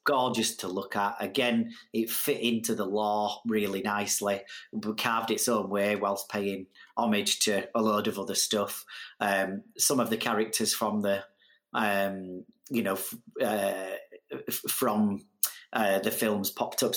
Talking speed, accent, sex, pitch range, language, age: 160 wpm, British, male, 100-120 Hz, English, 30-49